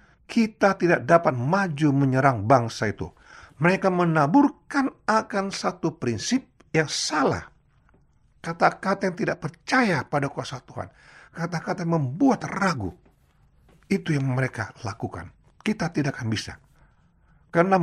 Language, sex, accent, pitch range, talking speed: Indonesian, male, native, 135-180 Hz, 115 wpm